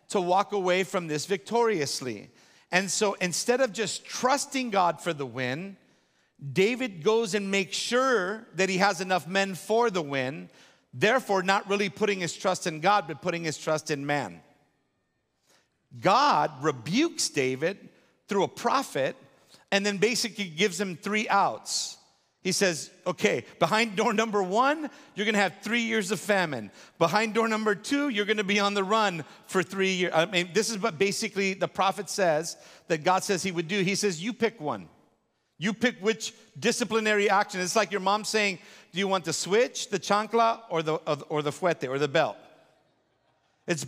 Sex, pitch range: male, 175-225 Hz